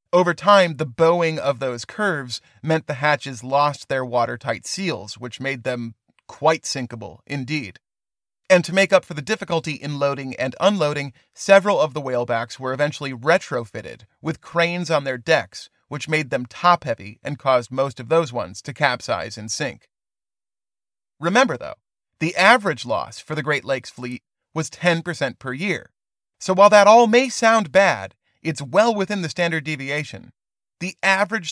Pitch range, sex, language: 135-175 Hz, male, English